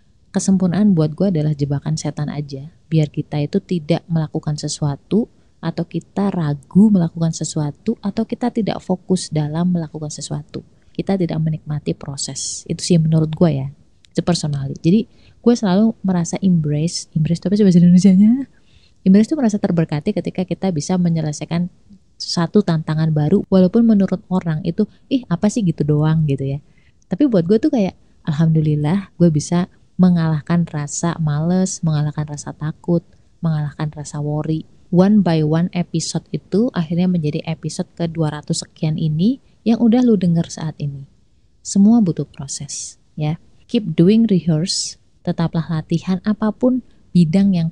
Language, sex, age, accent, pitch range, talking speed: Indonesian, female, 30-49, native, 155-185 Hz, 145 wpm